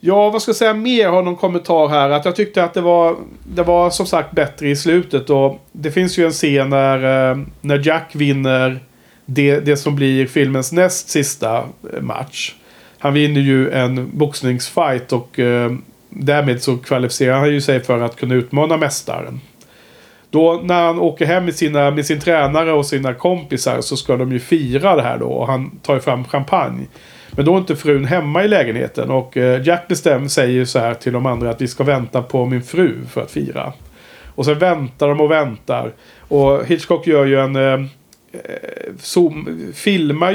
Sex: male